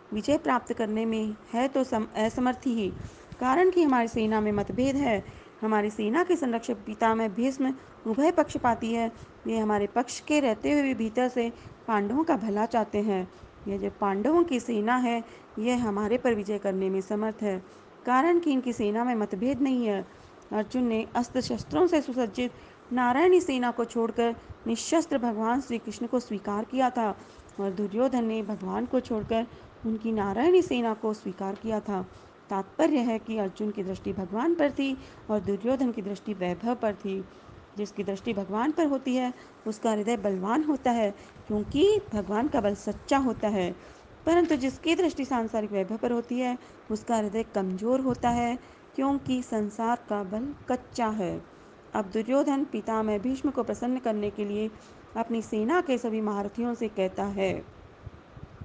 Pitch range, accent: 210-255 Hz, native